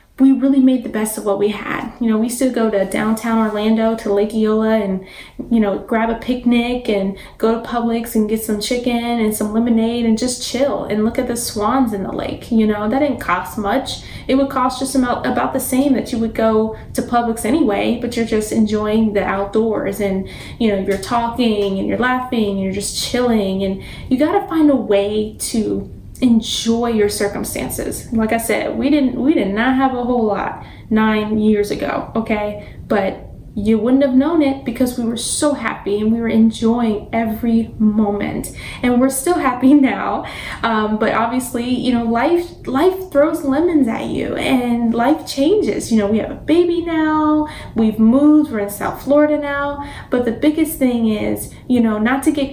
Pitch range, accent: 215-260 Hz, American